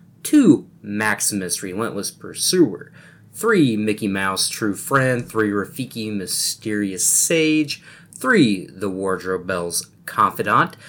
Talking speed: 100 wpm